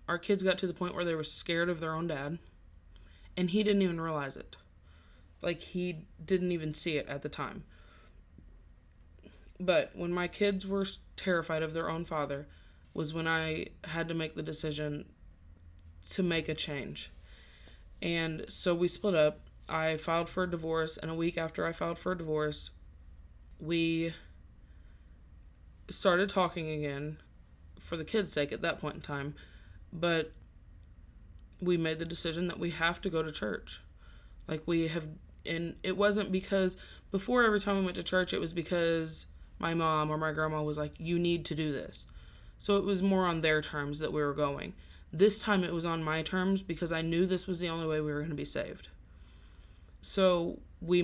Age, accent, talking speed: 20-39, American, 185 wpm